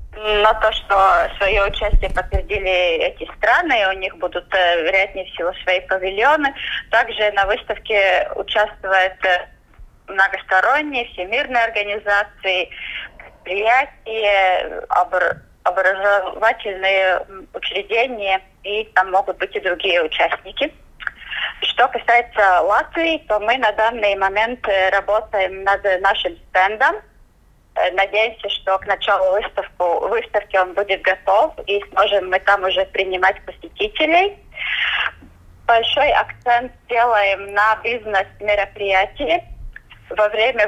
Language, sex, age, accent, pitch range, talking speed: Russian, female, 20-39, native, 190-230 Hz, 95 wpm